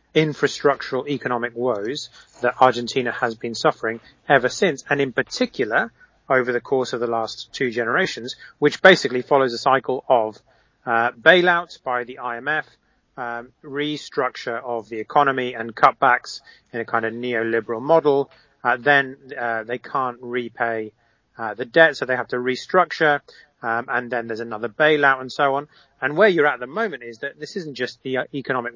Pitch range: 115-140 Hz